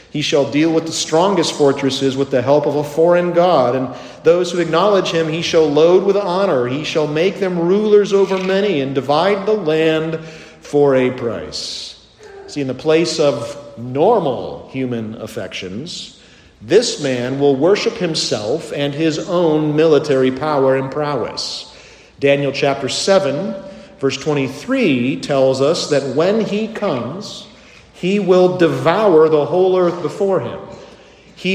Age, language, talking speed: 50-69, English, 150 wpm